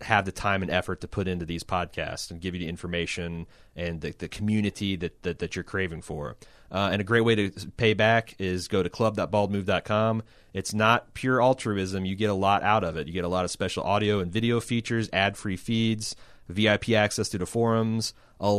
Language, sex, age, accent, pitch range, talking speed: English, male, 30-49, American, 95-115 Hz, 215 wpm